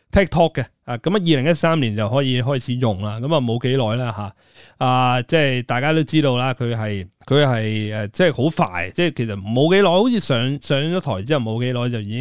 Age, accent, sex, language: 30-49, native, male, Chinese